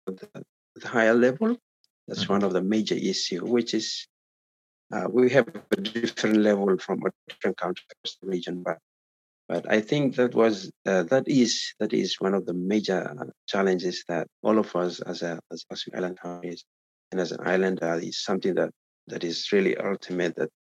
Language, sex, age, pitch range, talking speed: English, male, 50-69, 90-110 Hz, 180 wpm